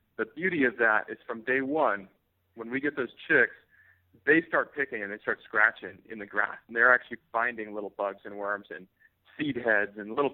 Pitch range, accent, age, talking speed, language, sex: 105-135 Hz, American, 40-59, 210 wpm, English, male